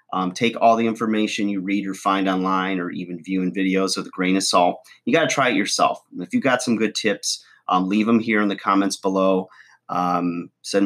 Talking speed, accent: 225 wpm, American